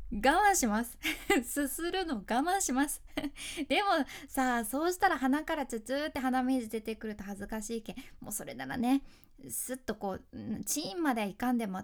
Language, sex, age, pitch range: Japanese, female, 20-39, 220-300 Hz